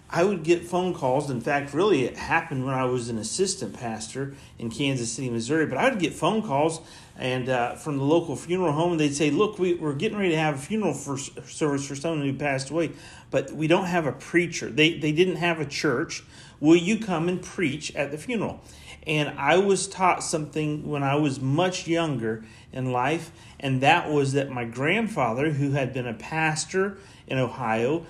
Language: English